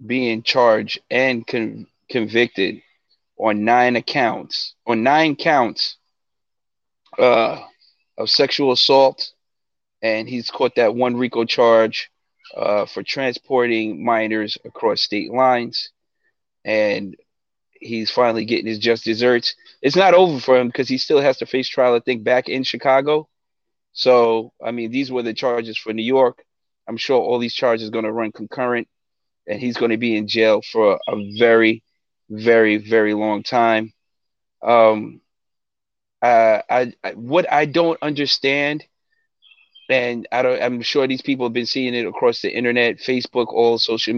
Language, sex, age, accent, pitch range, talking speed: English, male, 30-49, American, 115-130 Hz, 150 wpm